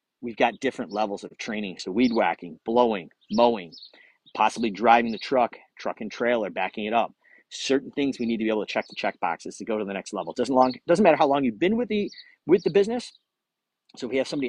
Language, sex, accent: English, male, American